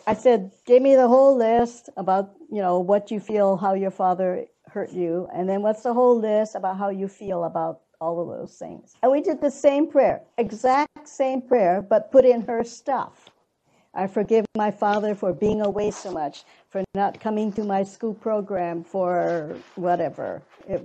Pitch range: 190-245 Hz